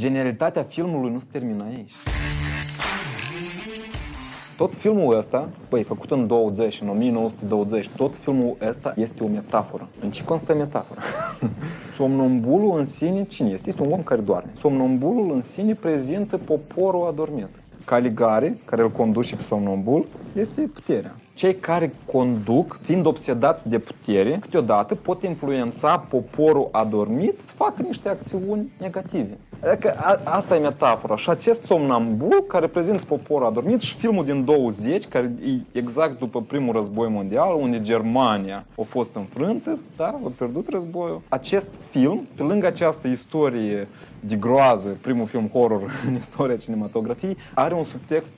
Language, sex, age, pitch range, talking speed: Romanian, male, 30-49, 120-175 Hz, 140 wpm